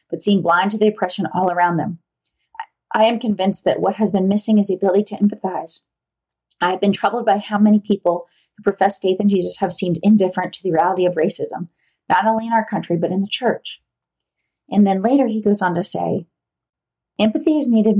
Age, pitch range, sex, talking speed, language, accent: 30-49, 185-220 Hz, female, 210 wpm, English, American